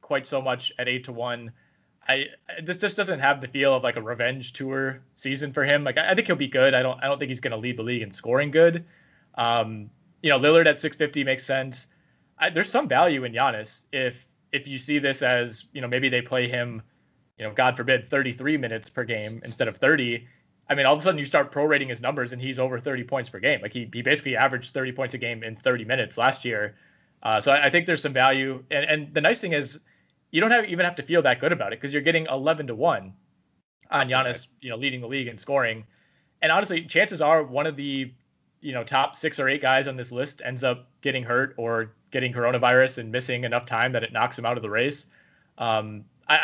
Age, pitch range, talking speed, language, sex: 20-39, 120-145 Hz, 250 wpm, English, male